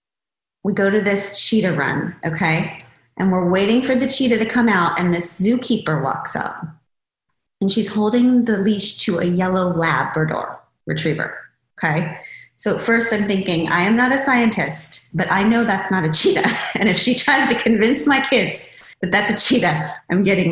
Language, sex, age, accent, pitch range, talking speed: English, female, 30-49, American, 190-260 Hz, 180 wpm